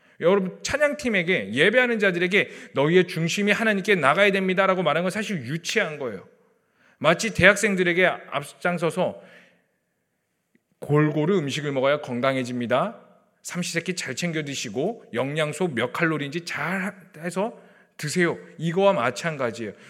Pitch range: 155-205 Hz